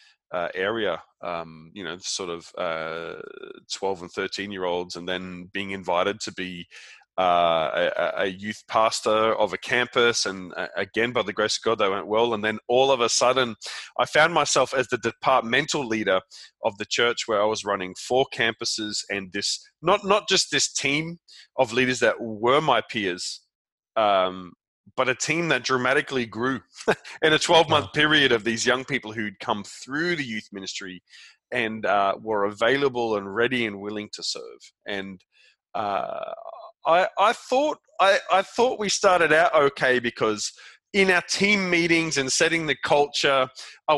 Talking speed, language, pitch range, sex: 175 wpm, English, 105-155 Hz, male